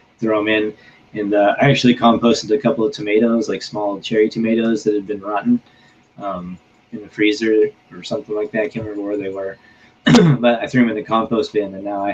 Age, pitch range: 30-49, 95-115 Hz